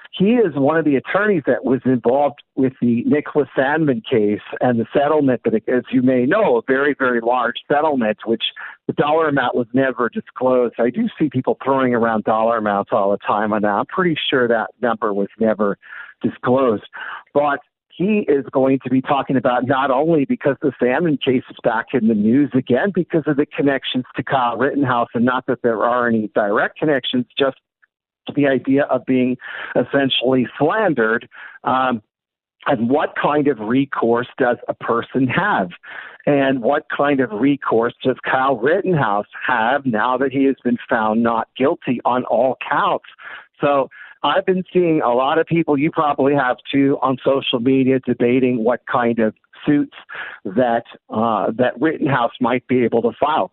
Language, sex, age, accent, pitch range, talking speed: English, male, 50-69, American, 120-145 Hz, 170 wpm